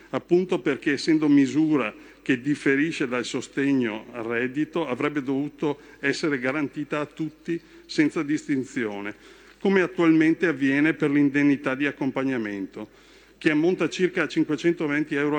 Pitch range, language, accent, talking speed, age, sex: 135-170 Hz, Italian, native, 115 wpm, 50-69, male